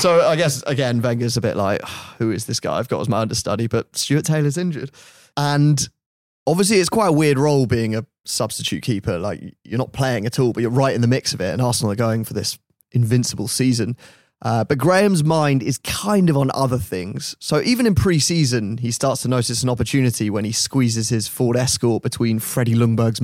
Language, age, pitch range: English, 20-39, 115-140 Hz